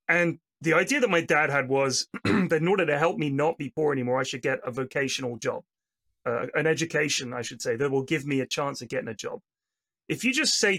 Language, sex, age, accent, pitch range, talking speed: English, male, 30-49, British, 140-180 Hz, 245 wpm